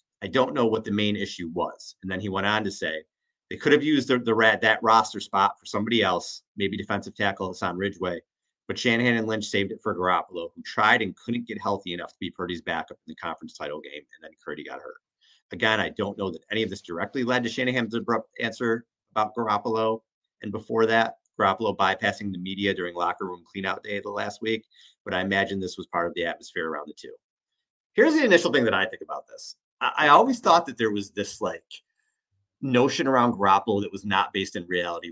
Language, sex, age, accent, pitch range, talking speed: English, male, 30-49, American, 95-125 Hz, 225 wpm